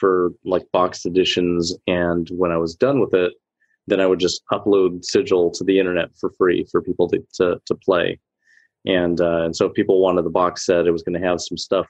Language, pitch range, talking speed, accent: English, 85-95 Hz, 225 wpm, American